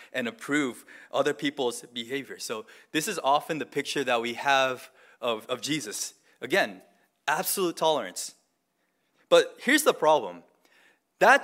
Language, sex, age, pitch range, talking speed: English, male, 20-39, 145-230 Hz, 130 wpm